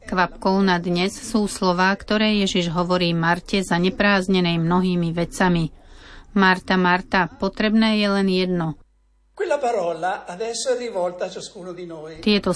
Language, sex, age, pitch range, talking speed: Slovak, female, 30-49, 175-205 Hz, 95 wpm